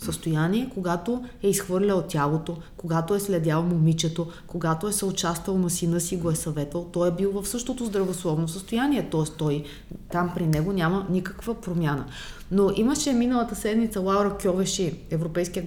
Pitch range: 170-210 Hz